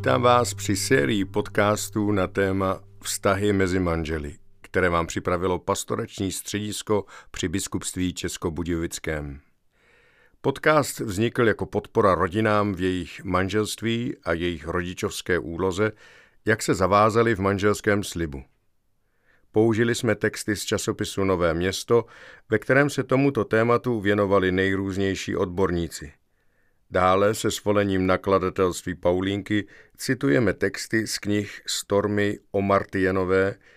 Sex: male